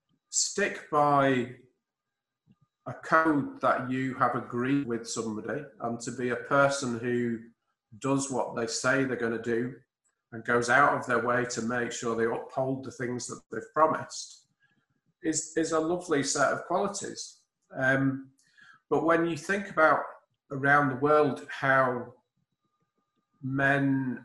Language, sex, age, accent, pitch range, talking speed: English, male, 40-59, British, 120-145 Hz, 145 wpm